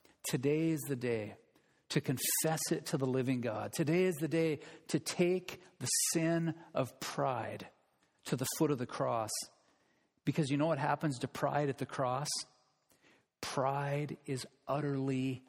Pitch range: 135-170 Hz